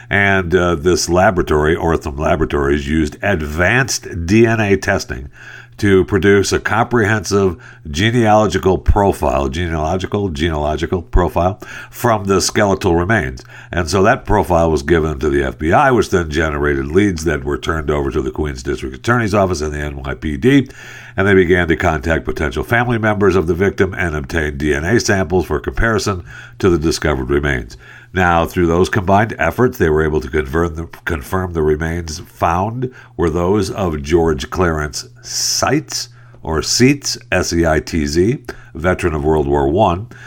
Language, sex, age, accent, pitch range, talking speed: English, male, 60-79, American, 85-115 Hz, 150 wpm